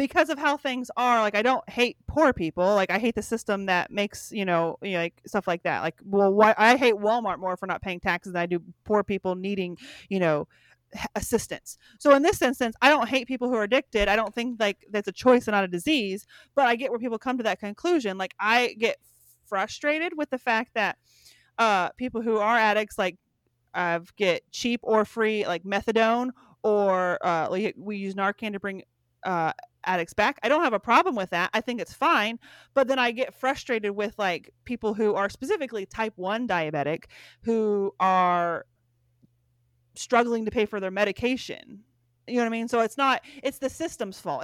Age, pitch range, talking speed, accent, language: 30-49, 185-240 Hz, 210 wpm, American, English